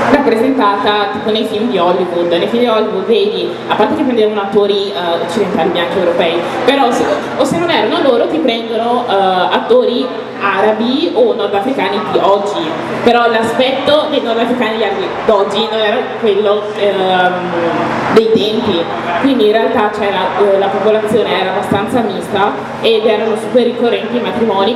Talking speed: 155 wpm